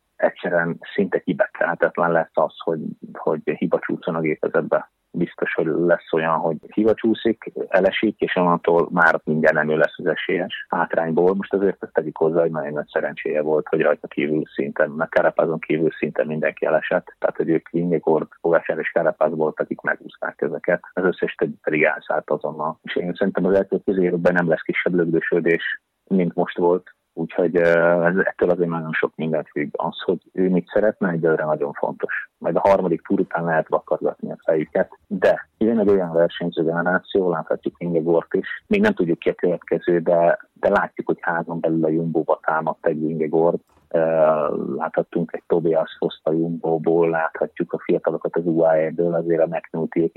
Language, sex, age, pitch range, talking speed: Hungarian, male, 30-49, 80-85 Hz, 170 wpm